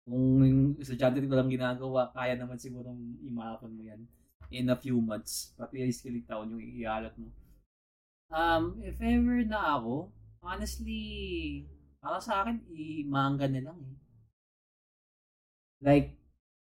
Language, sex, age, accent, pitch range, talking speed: Filipino, male, 20-39, native, 115-150 Hz, 145 wpm